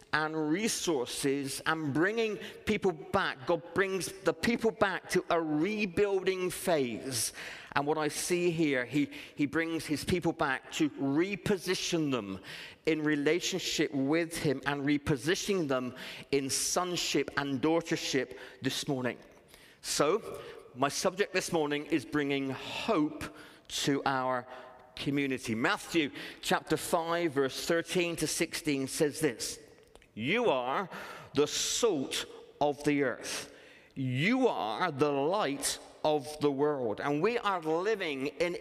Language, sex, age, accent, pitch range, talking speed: English, male, 40-59, British, 145-185 Hz, 125 wpm